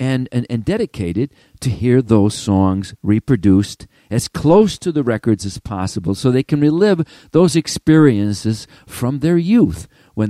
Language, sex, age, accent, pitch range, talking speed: English, male, 50-69, American, 100-150 Hz, 145 wpm